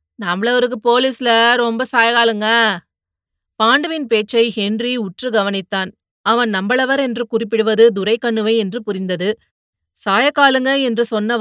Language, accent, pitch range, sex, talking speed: Tamil, native, 200-250 Hz, female, 100 wpm